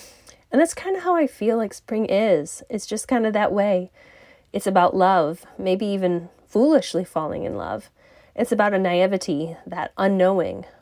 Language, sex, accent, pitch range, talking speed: English, female, American, 175-245 Hz, 170 wpm